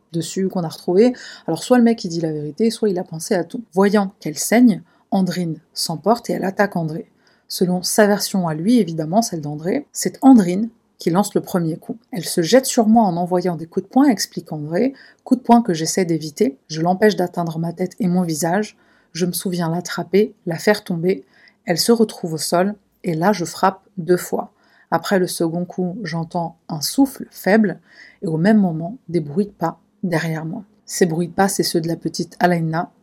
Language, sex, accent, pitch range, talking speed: French, female, French, 165-210 Hz, 210 wpm